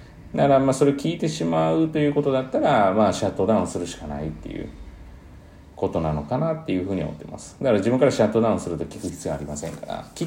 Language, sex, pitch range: Japanese, male, 85-130 Hz